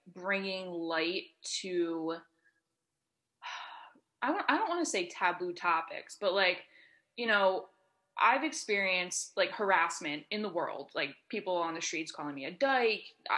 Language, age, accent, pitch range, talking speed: English, 20-39, American, 170-210 Hz, 145 wpm